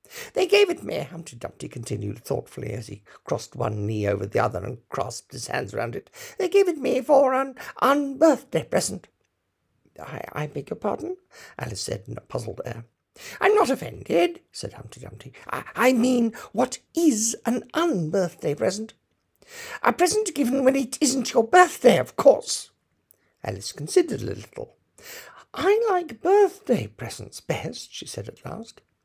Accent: British